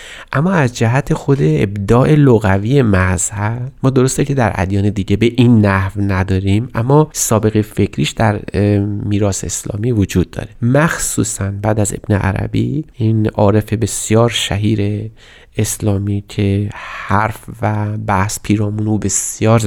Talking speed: 125 wpm